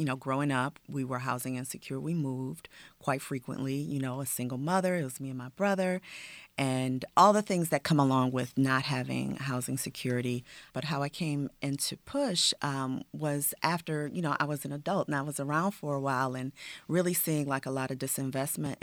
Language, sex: English, female